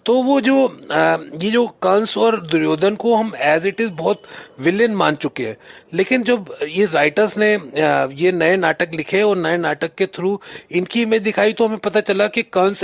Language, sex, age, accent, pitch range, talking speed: Hindi, male, 30-49, native, 170-220 Hz, 195 wpm